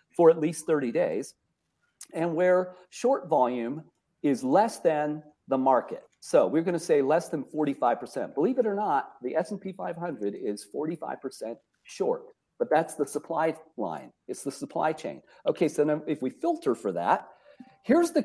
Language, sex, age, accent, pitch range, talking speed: English, male, 40-59, American, 150-220 Hz, 170 wpm